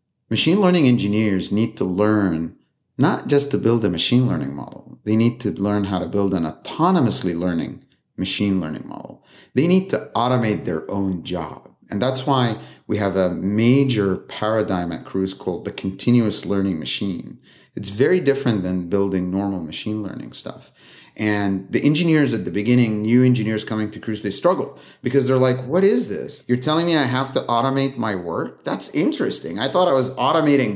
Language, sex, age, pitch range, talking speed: English, male, 30-49, 100-130 Hz, 180 wpm